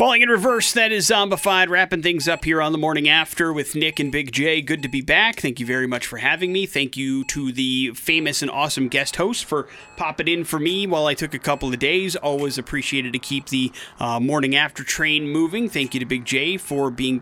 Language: English